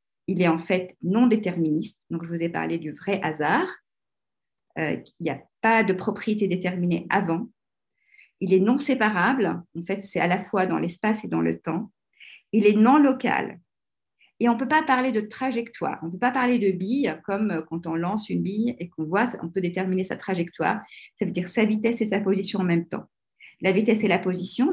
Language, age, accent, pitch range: French, 50-69, French, 175-225 Hz